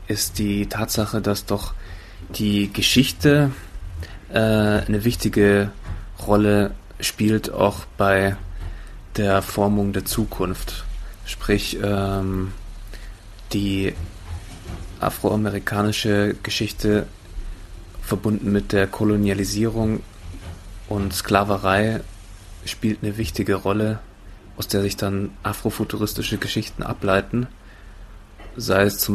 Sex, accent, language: male, German, German